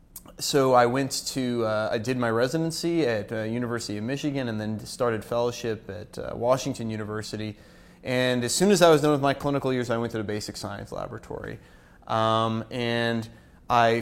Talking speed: 185 wpm